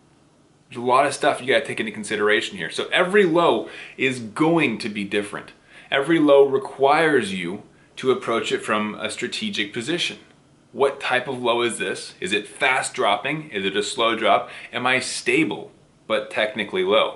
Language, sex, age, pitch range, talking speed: English, male, 30-49, 110-155 Hz, 180 wpm